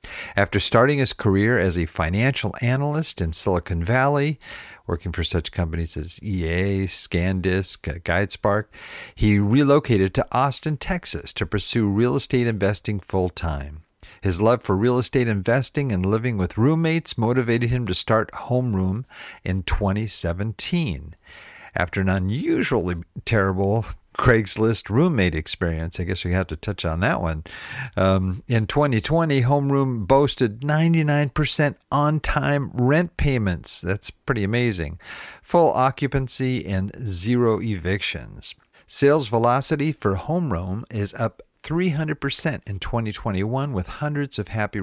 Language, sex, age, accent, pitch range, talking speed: English, male, 50-69, American, 95-135 Hz, 125 wpm